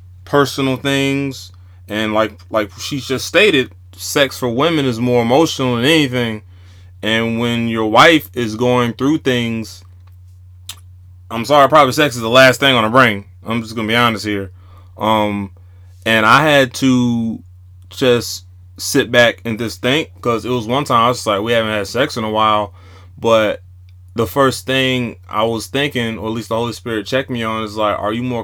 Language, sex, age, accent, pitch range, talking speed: English, male, 20-39, American, 95-120 Hz, 185 wpm